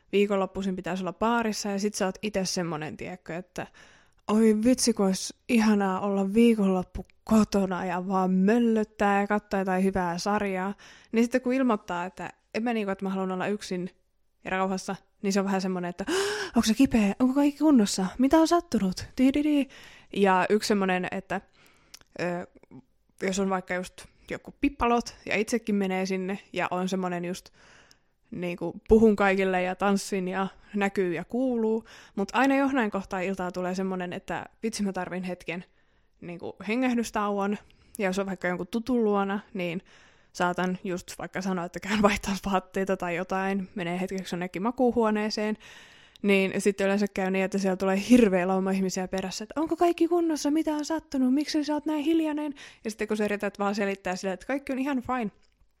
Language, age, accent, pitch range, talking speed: Finnish, 20-39, native, 185-225 Hz, 170 wpm